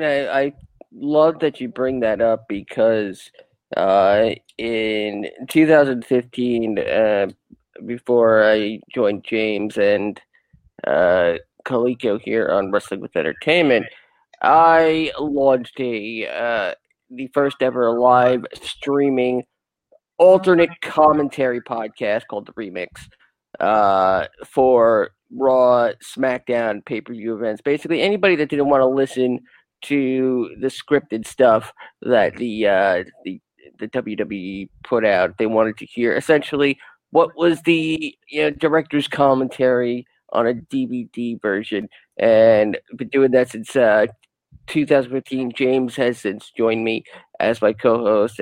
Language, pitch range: English, 115-145 Hz